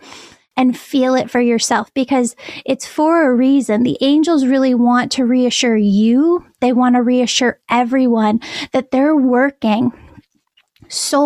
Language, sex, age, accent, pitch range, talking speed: English, female, 10-29, American, 235-270 Hz, 140 wpm